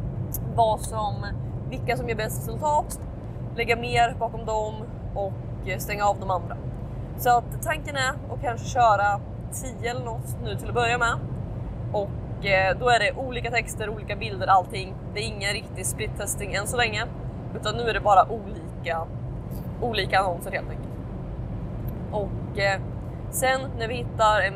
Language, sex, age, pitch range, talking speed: Swedish, female, 20-39, 115-135 Hz, 155 wpm